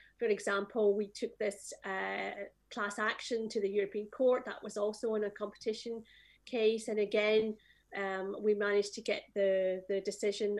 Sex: female